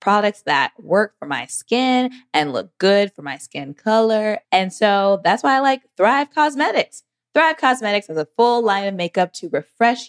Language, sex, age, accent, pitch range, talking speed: English, female, 20-39, American, 170-235 Hz, 185 wpm